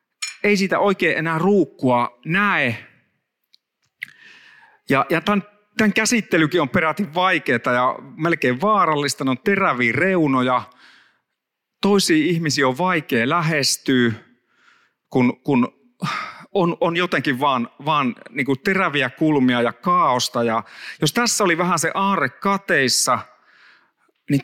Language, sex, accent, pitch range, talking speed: Finnish, male, native, 135-195 Hz, 120 wpm